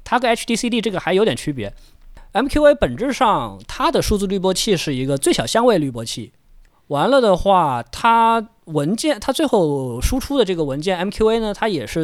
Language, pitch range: Chinese, 140-205 Hz